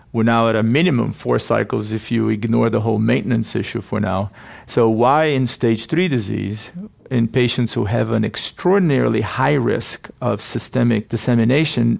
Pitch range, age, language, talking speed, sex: 110-125 Hz, 50-69, English, 165 wpm, male